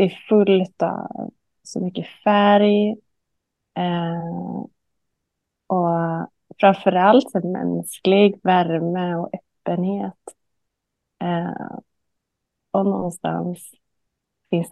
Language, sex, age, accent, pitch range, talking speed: Swedish, female, 20-39, native, 170-200 Hz, 75 wpm